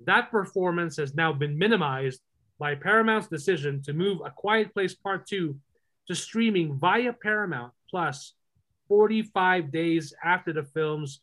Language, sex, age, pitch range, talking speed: English, male, 30-49, 145-195 Hz, 140 wpm